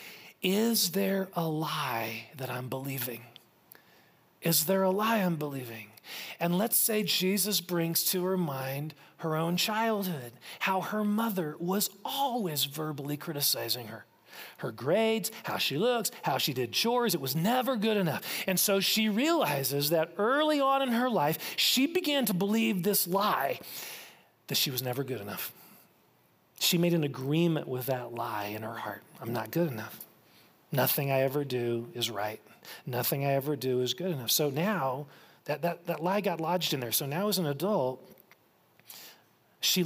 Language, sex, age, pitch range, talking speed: English, male, 40-59, 145-205 Hz, 165 wpm